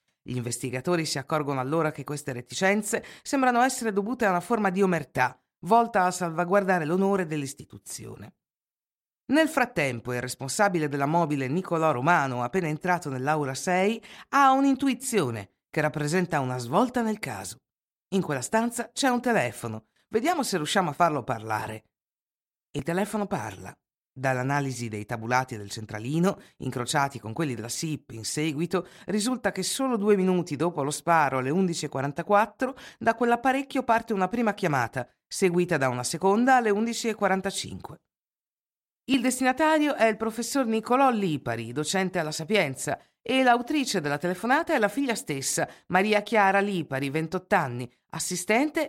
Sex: female